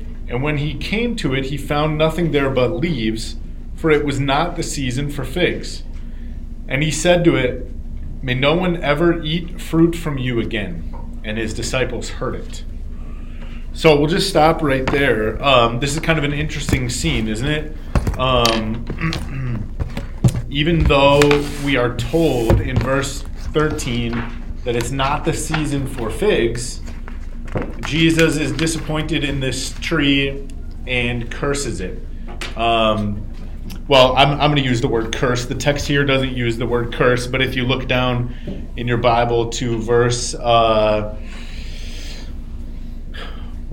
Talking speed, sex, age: 150 wpm, male, 30-49